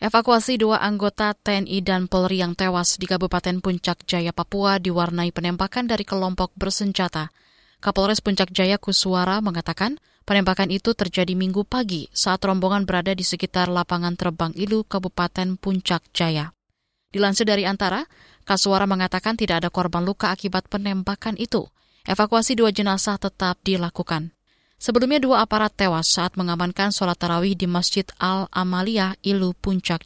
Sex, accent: female, native